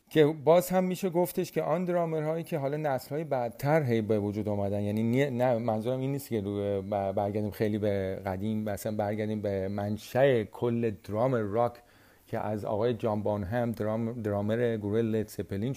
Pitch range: 110-135 Hz